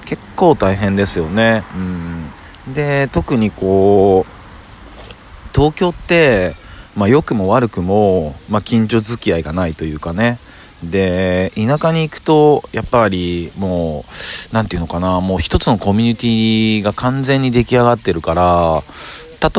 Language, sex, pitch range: Japanese, male, 85-120 Hz